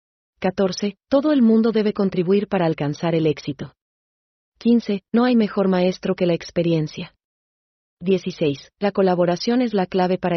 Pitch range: 160-195 Hz